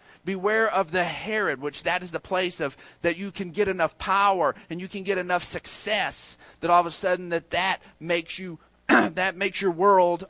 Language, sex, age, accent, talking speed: English, male, 40-59, American, 190 wpm